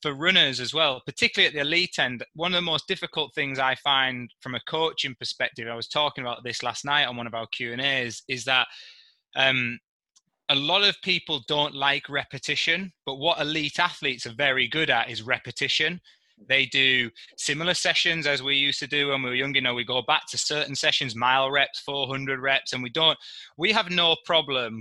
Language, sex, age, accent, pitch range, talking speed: English, male, 20-39, British, 125-155 Hz, 210 wpm